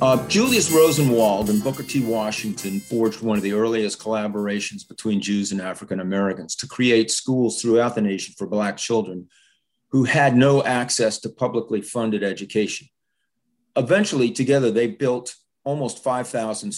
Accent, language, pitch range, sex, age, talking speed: American, English, 110-140 Hz, male, 40-59, 145 wpm